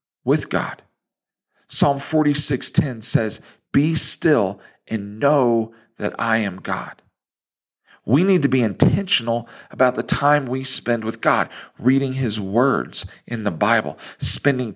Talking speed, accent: 130 wpm, American